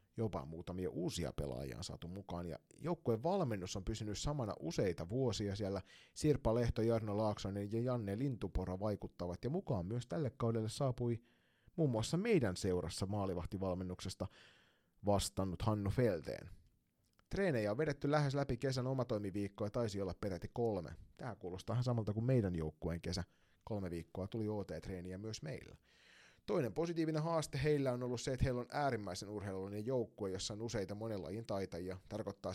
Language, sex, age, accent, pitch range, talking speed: Finnish, male, 30-49, native, 95-125 Hz, 150 wpm